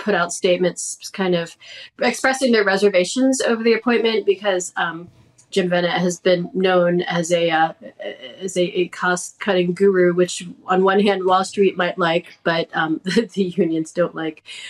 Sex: female